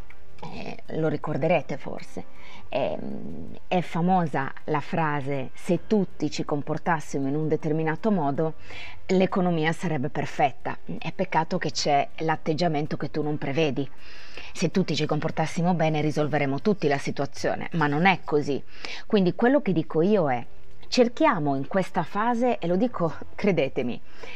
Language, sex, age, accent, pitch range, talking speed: Italian, female, 20-39, native, 150-195 Hz, 140 wpm